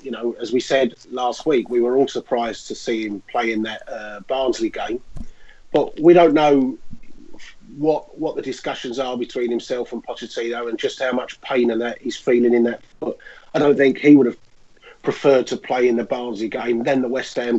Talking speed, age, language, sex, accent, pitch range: 210 wpm, 30-49, English, male, British, 120-135 Hz